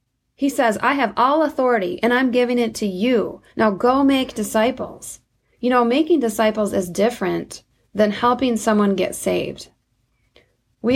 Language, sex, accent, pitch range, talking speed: English, female, American, 195-245 Hz, 155 wpm